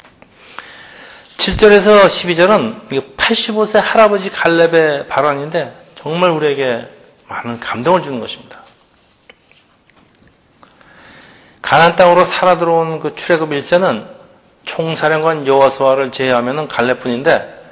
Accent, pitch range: native, 135-180 Hz